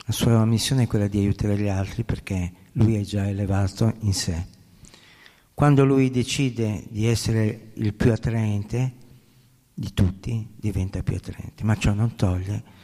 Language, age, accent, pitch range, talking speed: Italian, 50-69, native, 100-135 Hz, 155 wpm